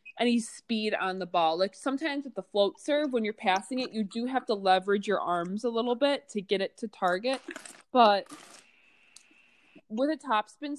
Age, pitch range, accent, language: 20-39, 190-245 Hz, American, English